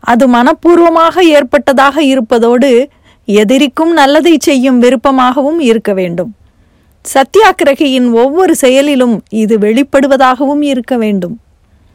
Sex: female